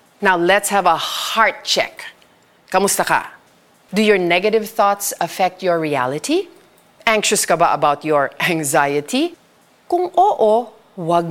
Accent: native